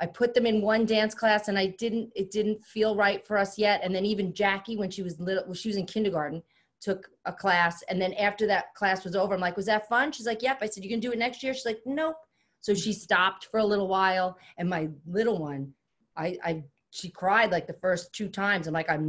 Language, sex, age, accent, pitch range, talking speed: English, female, 30-49, American, 165-215 Hz, 255 wpm